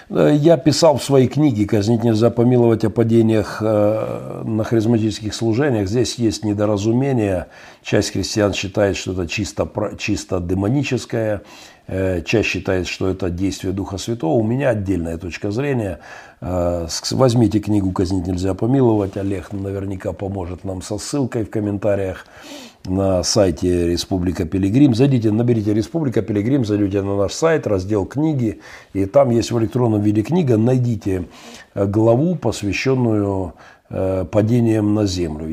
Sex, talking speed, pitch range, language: male, 130 wpm, 95-115 Hz, Russian